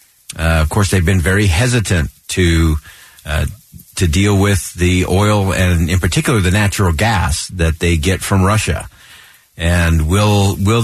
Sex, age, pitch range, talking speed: male, 50-69, 85-105 Hz, 155 wpm